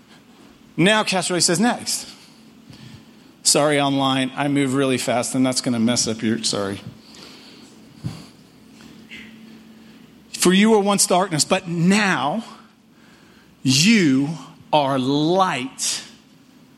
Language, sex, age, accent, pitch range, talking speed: English, male, 40-59, American, 185-255 Hz, 100 wpm